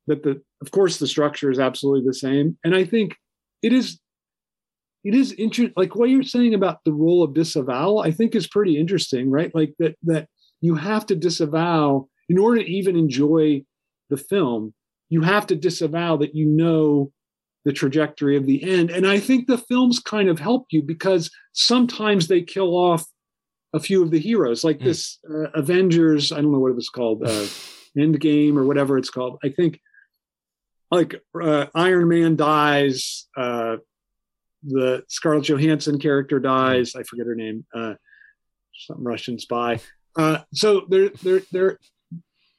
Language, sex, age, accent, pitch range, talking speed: English, male, 40-59, American, 145-195 Hz, 170 wpm